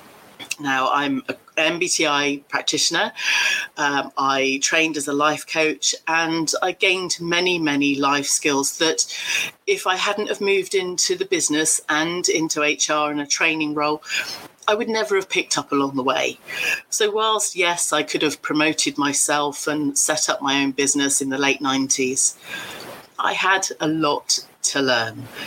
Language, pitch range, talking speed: English, 140-205 Hz, 160 wpm